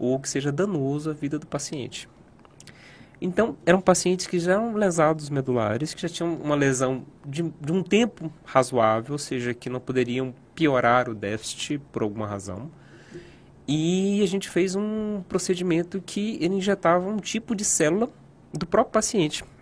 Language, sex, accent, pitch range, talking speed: Portuguese, male, Brazilian, 135-185 Hz, 160 wpm